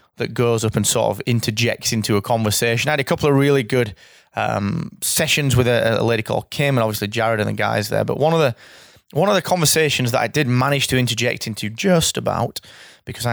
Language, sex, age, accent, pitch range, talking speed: English, male, 20-39, British, 115-140 Hz, 225 wpm